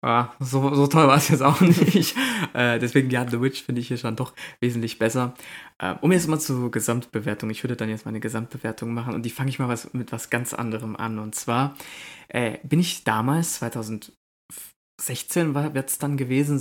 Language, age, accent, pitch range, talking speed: German, 20-39, German, 115-140 Hz, 200 wpm